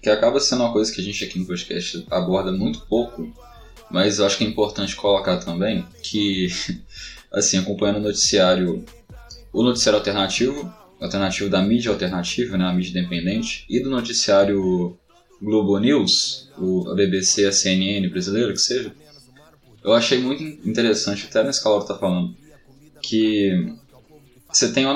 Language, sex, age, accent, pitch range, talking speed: Portuguese, male, 10-29, Brazilian, 95-120 Hz, 155 wpm